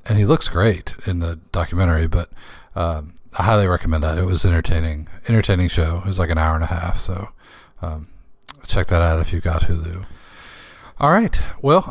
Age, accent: 40-59, American